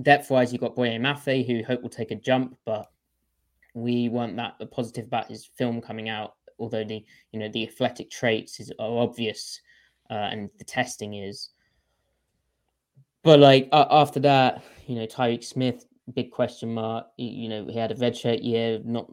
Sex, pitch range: male, 110-130 Hz